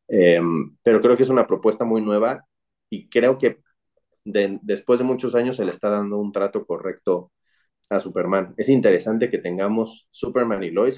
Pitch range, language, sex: 95-115 Hz, Spanish, male